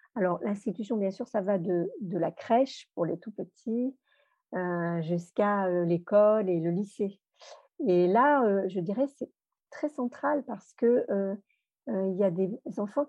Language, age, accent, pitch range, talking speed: French, 50-69, French, 195-240 Hz, 170 wpm